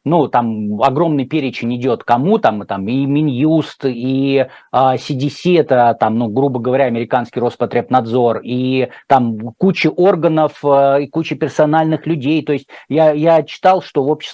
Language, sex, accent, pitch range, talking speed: Russian, male, native, 130-155 Hz, 155 wpm